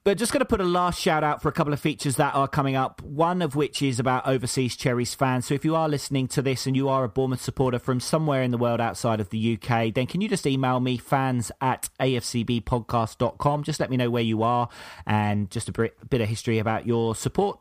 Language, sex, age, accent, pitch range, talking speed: English, male, 30-49, British, 115-145 Hz, 250 wpm